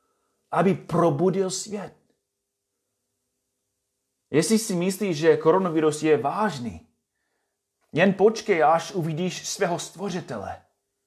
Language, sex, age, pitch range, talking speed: Czech, male, 30-49, 100-165 Hz, 85 wpm